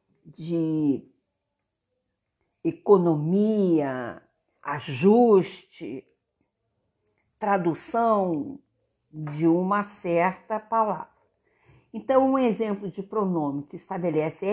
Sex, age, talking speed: female, 50-69, 60 wpm